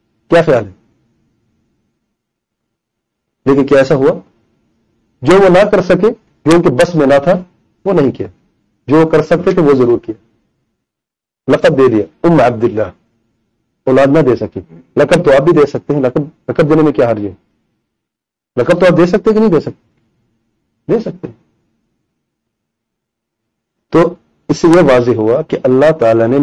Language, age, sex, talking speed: English, 40-59, male, 150 wpm